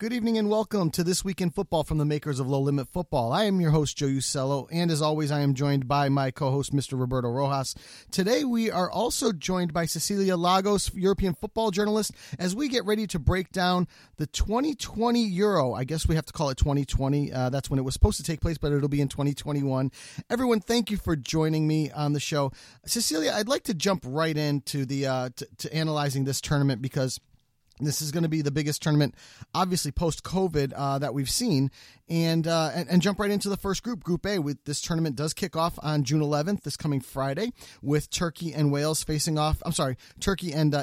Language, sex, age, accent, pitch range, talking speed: English, male, 30-49, American, 140-195 Hz, 220 wpm